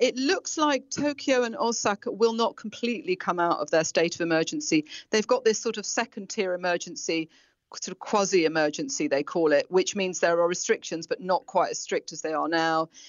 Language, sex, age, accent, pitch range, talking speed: English, female, 40-59, British, 160-210 Hz, 200 wpm